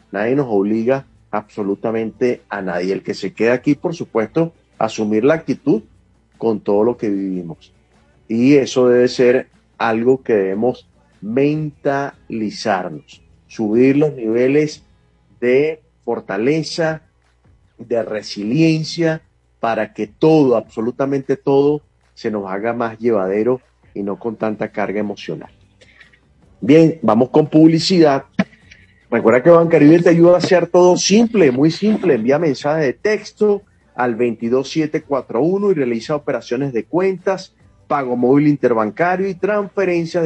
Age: 40-59